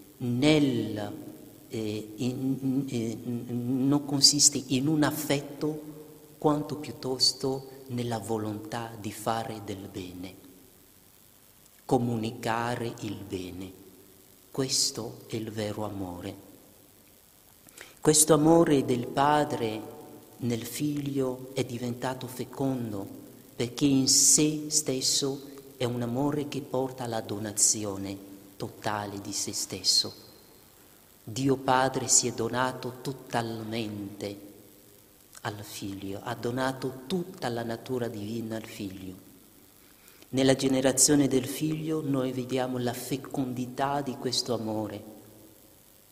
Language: Italian